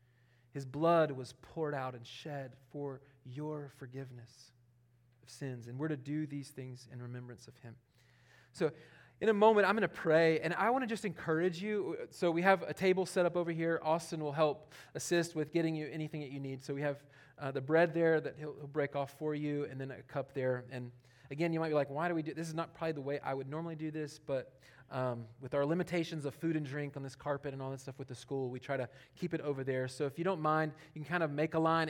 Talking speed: 255 wpm